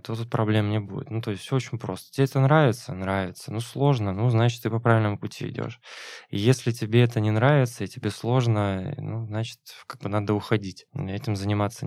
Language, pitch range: Russian, 105-130 Hz